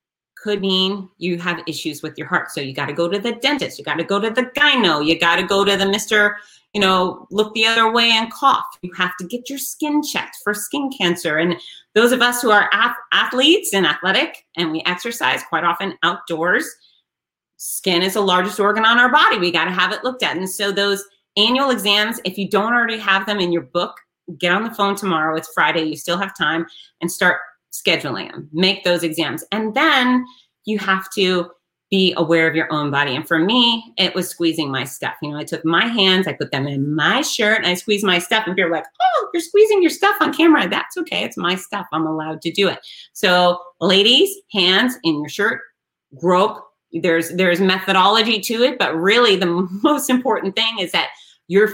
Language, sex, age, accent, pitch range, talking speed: English, female, 30-49, American, 170-220 Hz, 215 wpm